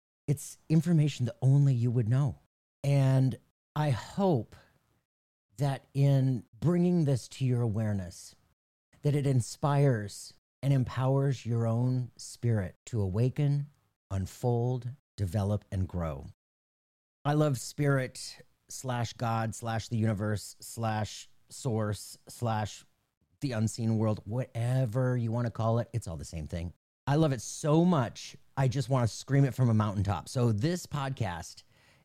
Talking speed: 135 wpm